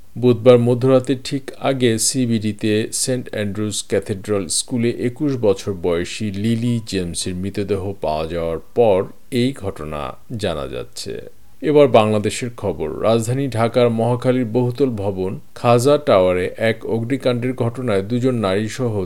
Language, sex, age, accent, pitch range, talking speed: Bengali, male, 50-69, native, 100-125 Hz, 70 wpm